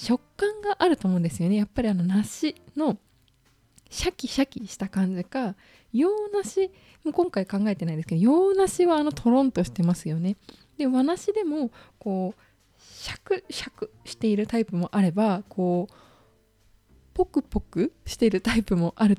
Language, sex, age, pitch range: Japanese, female, 20-39, 180-260 Hz